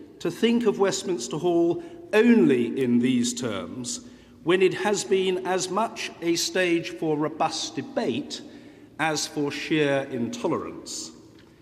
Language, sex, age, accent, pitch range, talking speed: English, male, 50-69, British, 150-240 Hz, 125 wpm